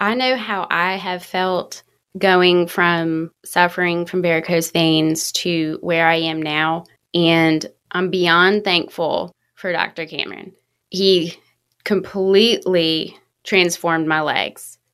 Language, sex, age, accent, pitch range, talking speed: English, female, 20-39, American, 170-210 Hz, 115 wpm